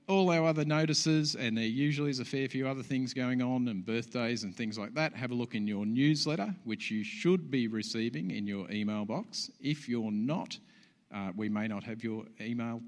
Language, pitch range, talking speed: English, 105-135 Hz, 215 wpm